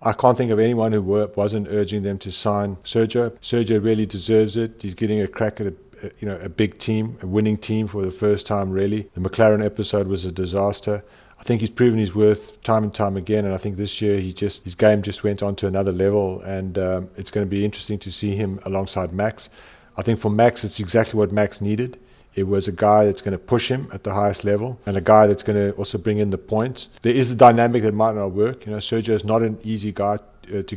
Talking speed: 250 wpm